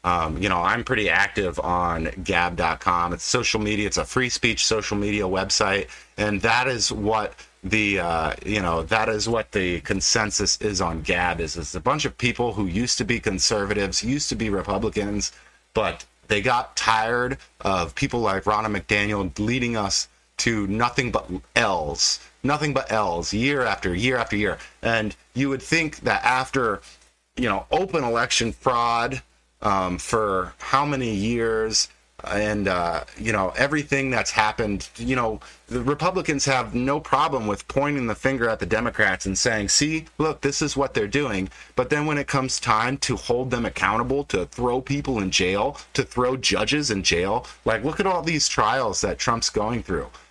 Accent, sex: American, male